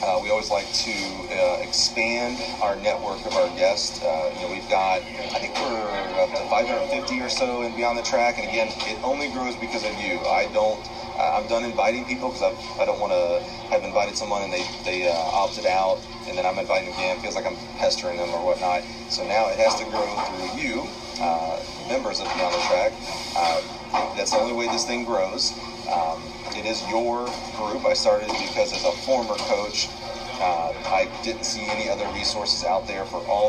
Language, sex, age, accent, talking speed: English, male, 30-49, American, 205 wpm